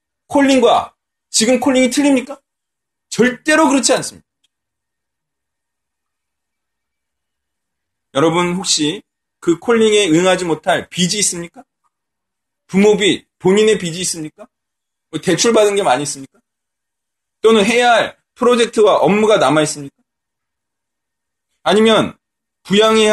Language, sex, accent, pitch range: Korean, male, native, 150-230 Hz